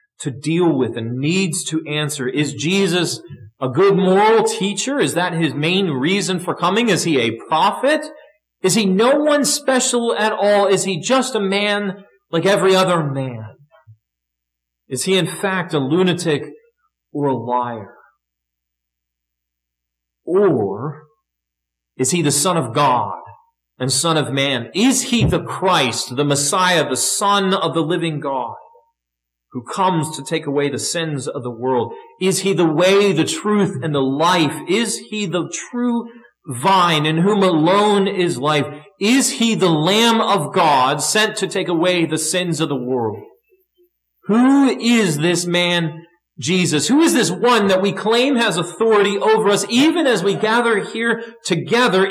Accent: American